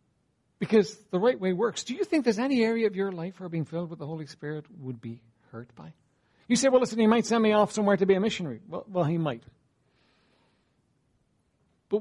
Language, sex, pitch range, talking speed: English, male, 155-220 Hz, 220 wpm